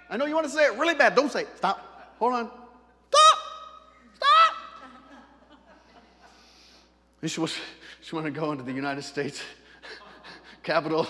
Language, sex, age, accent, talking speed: English, male, 40-59, American, 140 wpm